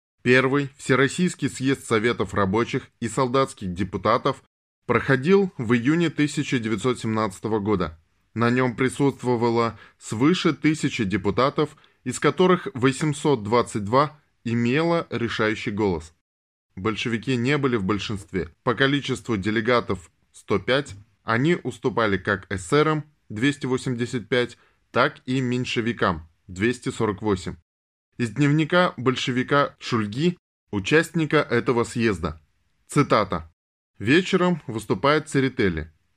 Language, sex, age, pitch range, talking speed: Russian, male, 20-39, 100-140 Hz, 90 wpm